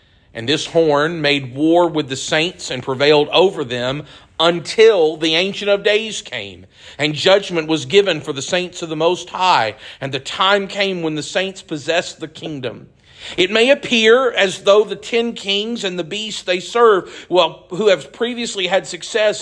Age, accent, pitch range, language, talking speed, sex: 50-69, American, 165-225 Hz, English, 180 wpm, male